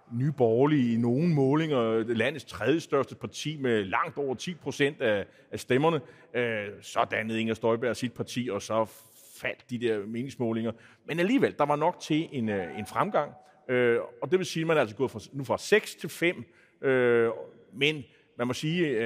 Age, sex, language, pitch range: 30-49, male, Danish, 110-150 Hz